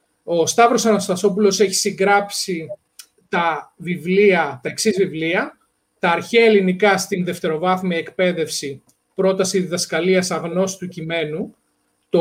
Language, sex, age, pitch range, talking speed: Greek, male, 40-59, 170-230 Hz, 110 wpm